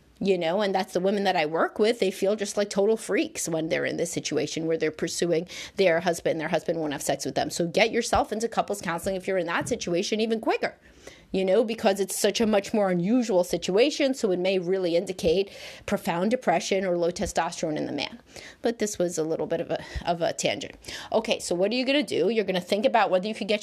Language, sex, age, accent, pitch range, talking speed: English, female, 30-49, American, 165-210 Hz, 245 wpm